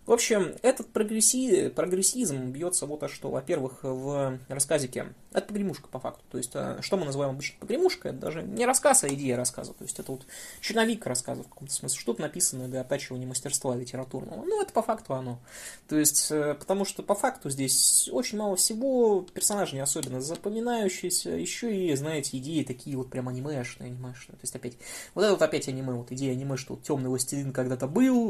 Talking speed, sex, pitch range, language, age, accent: 190 wpm, male, 130-195 Hz, Russian, 20-39, native